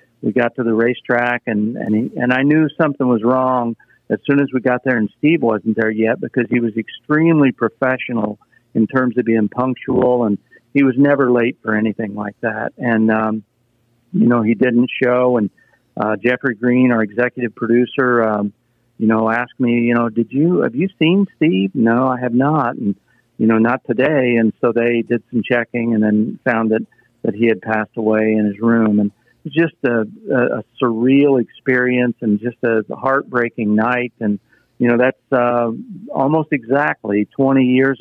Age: 50-69